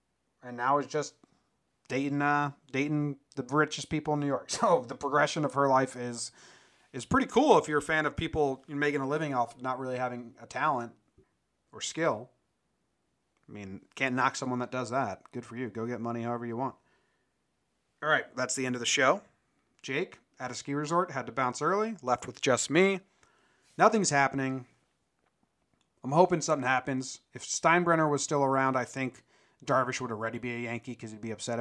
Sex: male